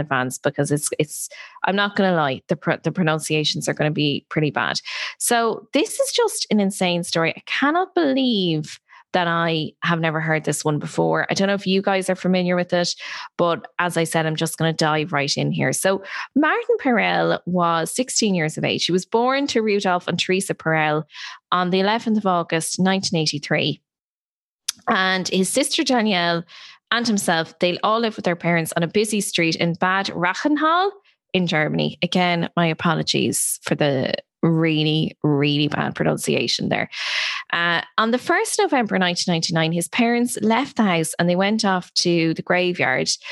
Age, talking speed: 20-39, 180 wpm